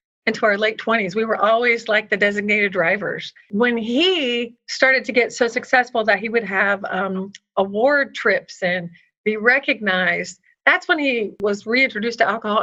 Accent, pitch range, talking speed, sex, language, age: American, 190-235 Hz, 165 wpm, female, English, 40-59